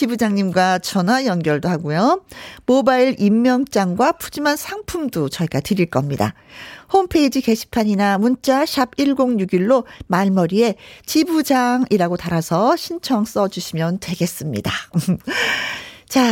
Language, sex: Korean, female